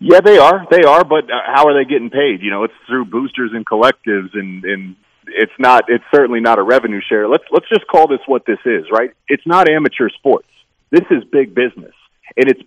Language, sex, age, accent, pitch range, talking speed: English, male, 30-49, American, 110-150 Hz, 225 wpm